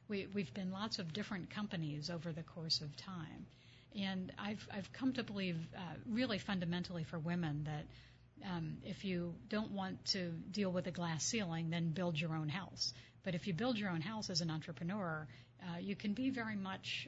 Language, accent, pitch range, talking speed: English, American, 160-190 Hz, 195 wpm